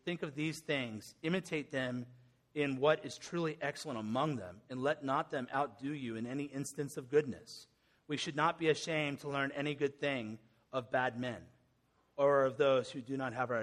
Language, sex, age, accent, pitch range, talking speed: English, male, 30-49, American, 130-160 Hz, 200 wpm